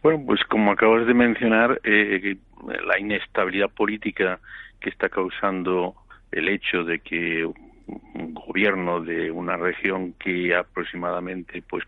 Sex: male